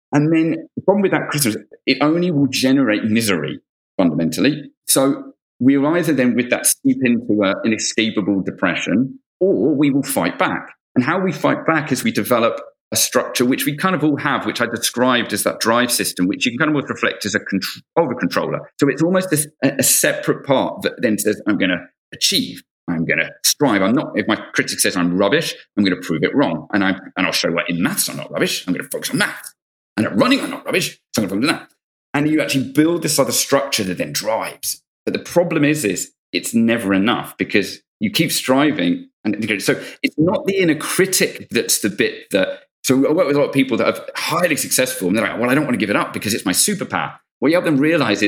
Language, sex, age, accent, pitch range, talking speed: English, male, 40-59, British, 115-160 Hz, 230 wpm